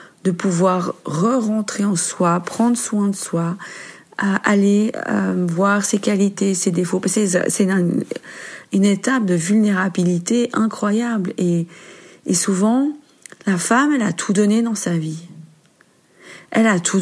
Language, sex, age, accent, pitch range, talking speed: French, female, 40-59, French, 180-230 Hz, 125 wpm